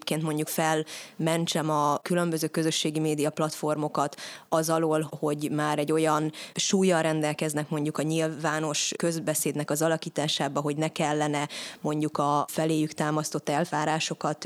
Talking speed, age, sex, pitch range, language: 125 wpm, 20-39, female, 150-165 Hz, Hungarian